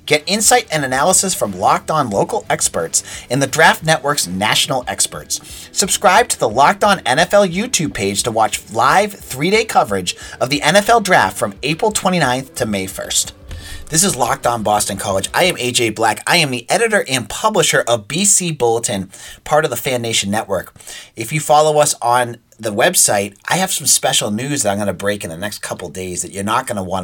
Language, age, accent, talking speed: English, 30-49, American, 200 wpm